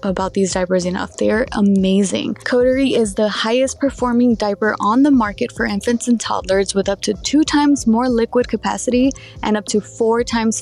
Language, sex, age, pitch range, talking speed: English, female, 20-39, 200-245 Hz, 180 wpm